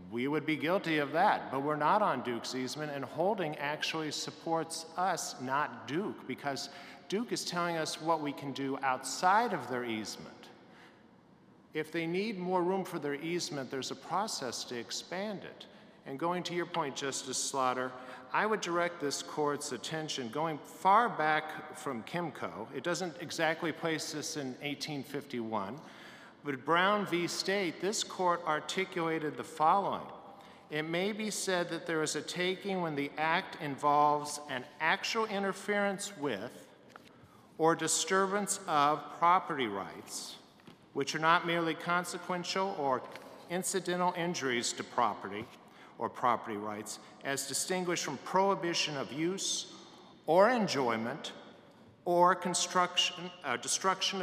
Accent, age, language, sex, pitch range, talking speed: American, 50-69, English, male, 140-180 Hz, 140 wpm